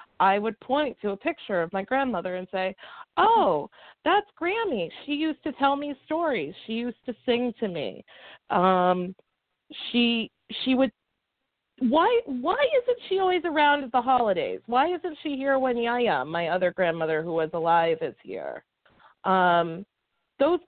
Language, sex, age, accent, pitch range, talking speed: English, female, 30-49, American, 195-275 Hz, 160 wpm